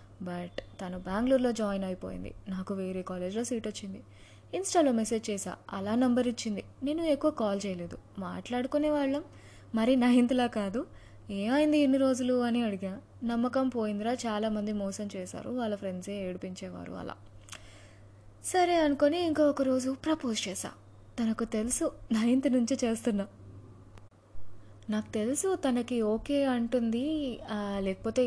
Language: Telugu